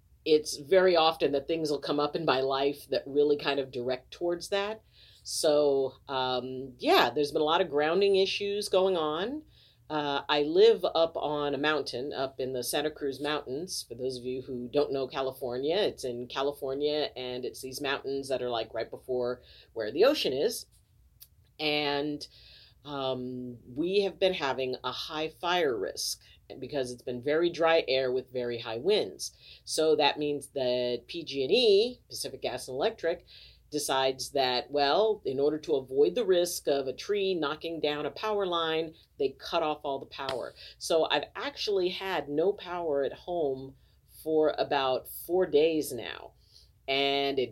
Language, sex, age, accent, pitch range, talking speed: English, female, 40-59, American, 130-170 Hz, 170 wpm